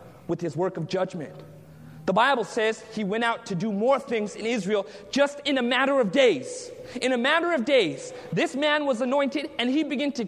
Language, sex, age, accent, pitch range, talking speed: English, male, 30-49, American, 190-265 Hz, 210 wpm